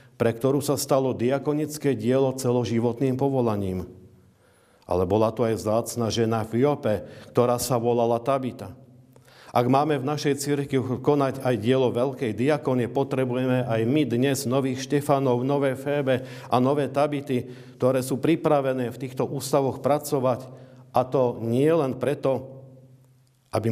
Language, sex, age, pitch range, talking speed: Slovak, male, 50-69, 115-135 Hz, 135 wpm